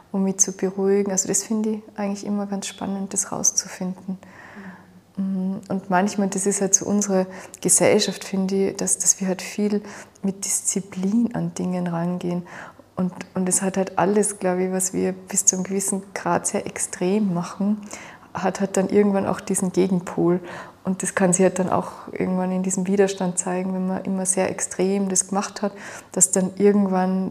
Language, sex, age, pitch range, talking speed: German, female, 20-39, 185-200 Hz, 180 wpm